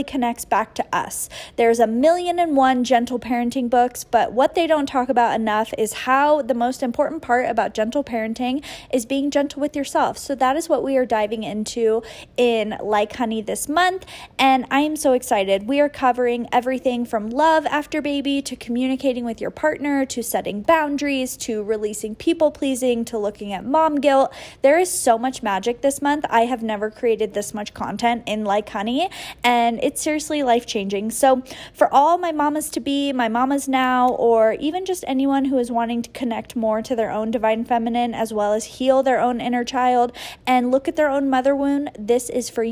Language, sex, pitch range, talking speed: English, female, 230-280 Hz, 195 wpm